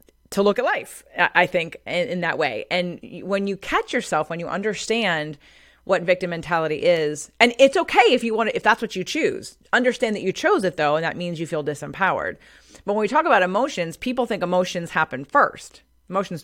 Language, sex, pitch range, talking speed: English, female, 175-240 Hz, 210 wpm